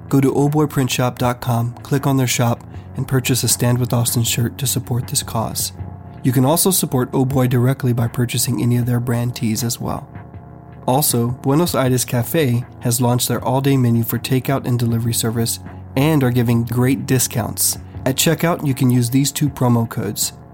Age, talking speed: 30-49, 180 wpm